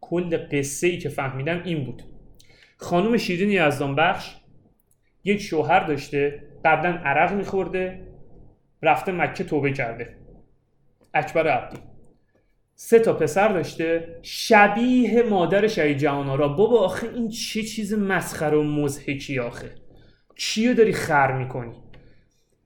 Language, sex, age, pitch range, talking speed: Persian, male, 30-49, 145-205 Hz, 120 wpm